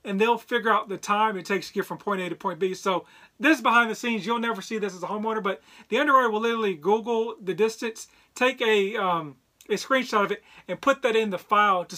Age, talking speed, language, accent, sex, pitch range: 40-59, 255 wpm, English, American, male, 190-230 Hz